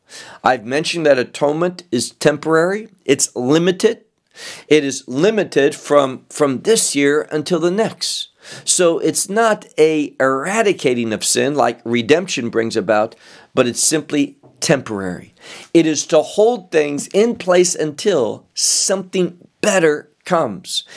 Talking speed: 125 wpm